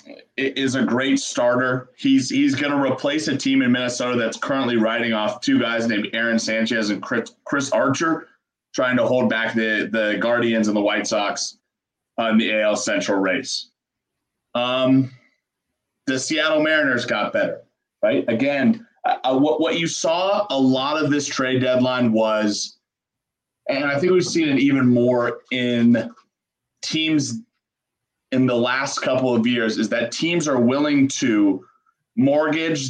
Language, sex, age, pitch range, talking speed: English, male, 30-49, 120-165 Hz, 155 wpm